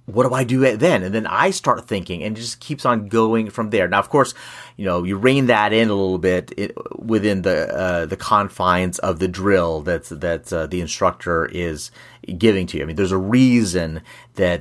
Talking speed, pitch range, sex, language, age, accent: 220 wpm, 95-130 Hz, male, English, 30-49, American